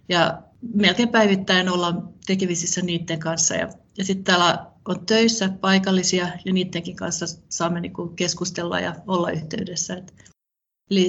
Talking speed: 135 wpm